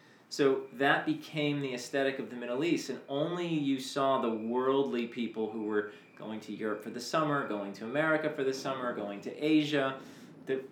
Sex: male